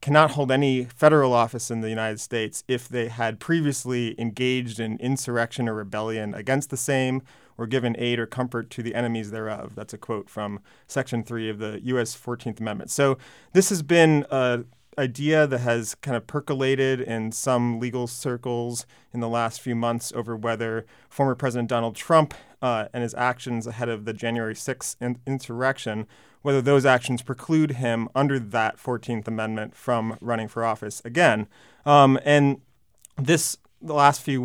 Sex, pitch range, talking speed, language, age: male, 115-135 Hz, 170 wpm, English, 30-49